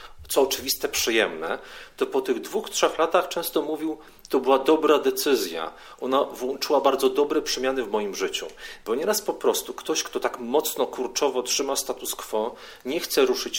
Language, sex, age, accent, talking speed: Polish, male, 40-59, native, 170 wpm